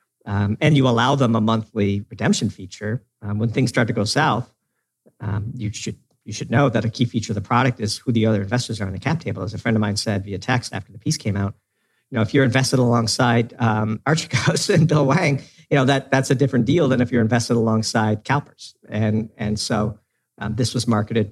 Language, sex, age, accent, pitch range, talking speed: English, male, 50-69, American, 105-130 Hz, 235 wpm